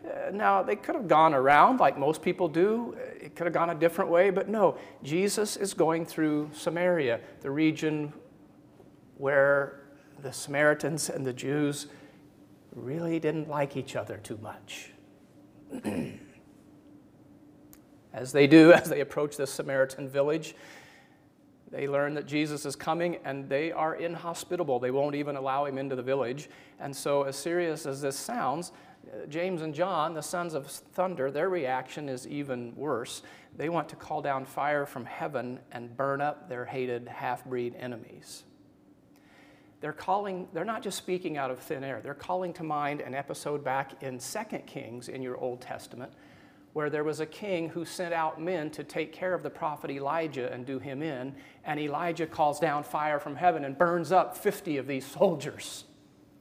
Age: 40-59